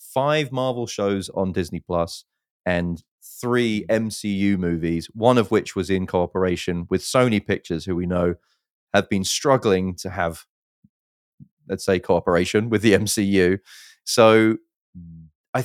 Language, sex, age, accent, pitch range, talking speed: English, male, 30-49, British, 90-110 Hz, 135 wpm